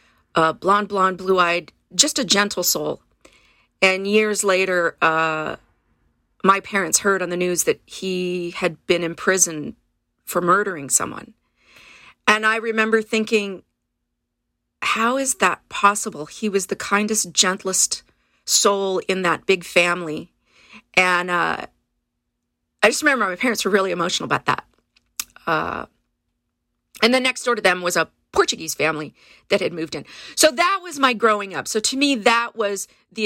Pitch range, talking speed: 180-215 Hz, 150 wpm